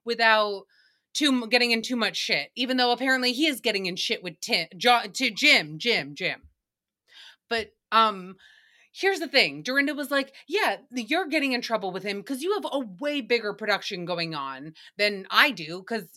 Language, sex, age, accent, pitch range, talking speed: English, female, 30-49, American, 205-260 Hz, 185 wpm